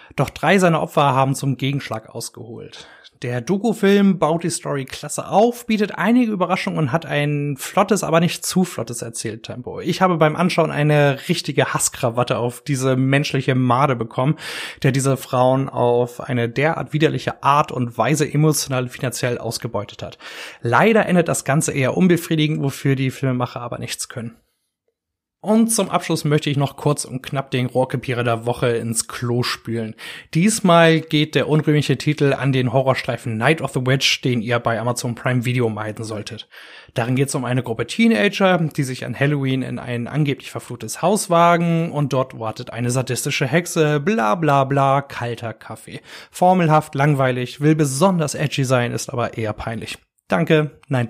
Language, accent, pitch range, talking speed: German, German, 120-155 Hz, 165 wpm